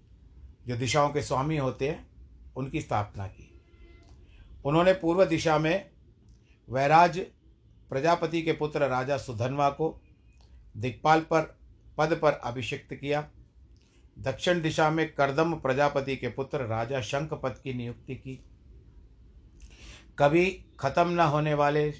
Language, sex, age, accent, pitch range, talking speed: Hindi, male, 50-69, native, 105-150 Hz, 115 wpm